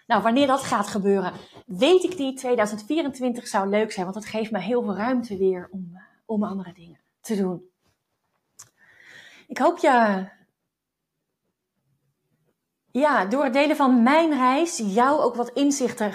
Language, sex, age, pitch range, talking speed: Dutch, female, 30-49, 195-250 Hz, 150 wpm